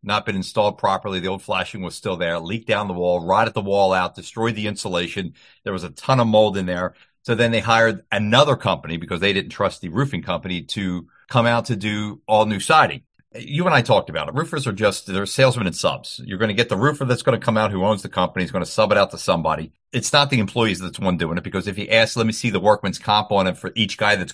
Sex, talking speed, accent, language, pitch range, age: male, 270 wpm, American, English, 95-120 Hz, 40-59